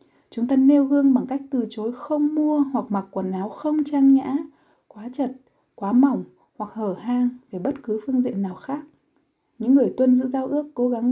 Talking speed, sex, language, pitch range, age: 210 wpm, female, Vietnamese, 215-270 Hz, 20-39